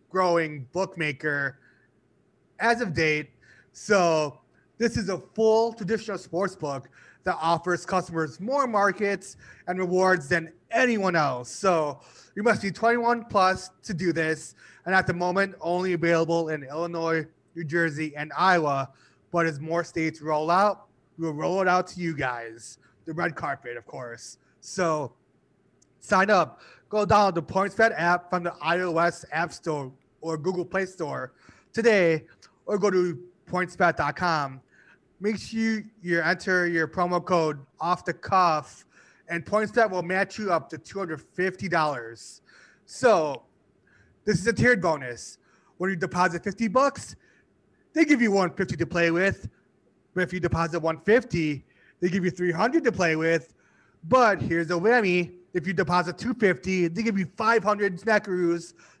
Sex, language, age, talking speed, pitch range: male, English, 30-49, 145 wpm, 160-195 Hz